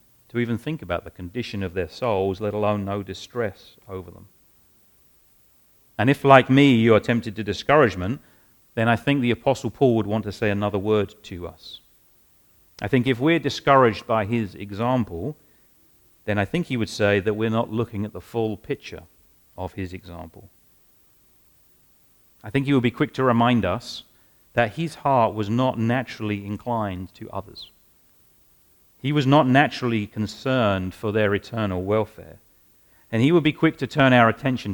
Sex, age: male, 40-59